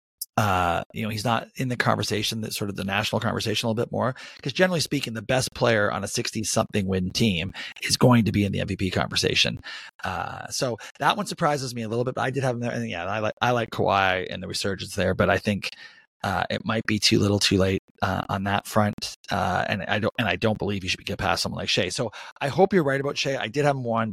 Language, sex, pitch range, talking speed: English, male, 105-145 Hz, 260 wpm